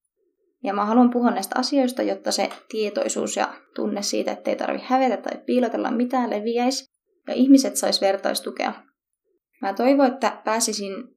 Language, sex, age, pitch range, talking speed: Finnish, female, 20-39, 205-265 Hz, 150 wpm